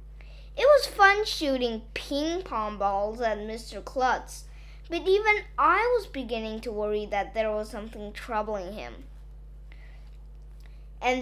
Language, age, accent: Chinese, 20-39, American